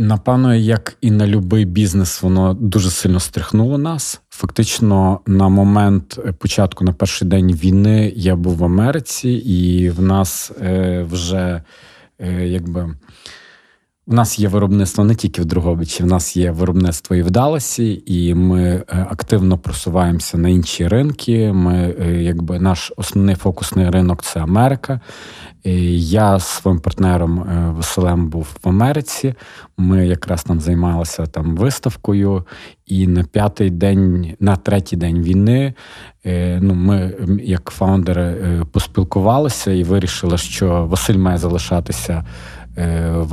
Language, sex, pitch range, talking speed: Ukrainian, male, 85-100 Hz, 125 wpm